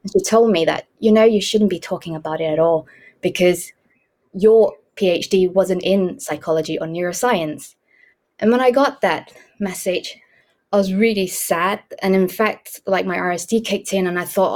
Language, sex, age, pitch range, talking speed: English, female, 20-39, 170-225 Hz, 175 wpm